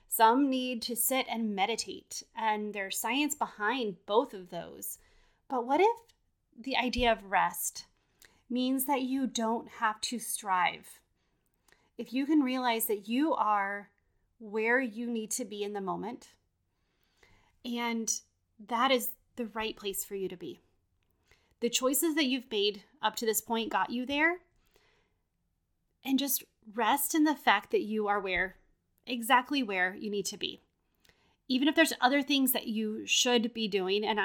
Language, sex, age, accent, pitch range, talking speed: English, female, 30-49, American, 210-260 Hz, 160 wpm